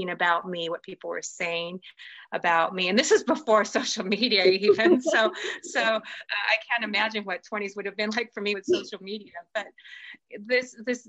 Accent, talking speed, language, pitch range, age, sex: American, 180 wpm, English, 175-220 Hz, 30-49, female